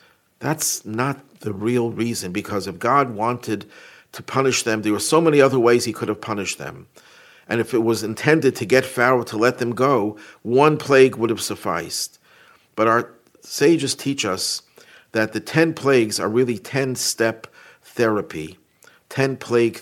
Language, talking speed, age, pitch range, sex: English, 165 wpm, 50-69, 105-130 Hz, male